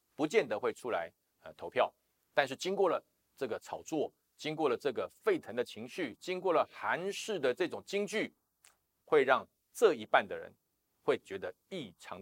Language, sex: Chinese, male